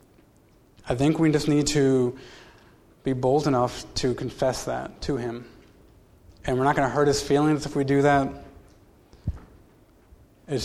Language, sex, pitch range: English, male, 120-145 Hz